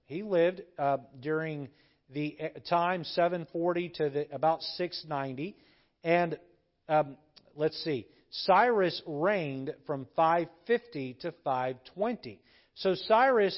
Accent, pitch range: American, 160-210 Hz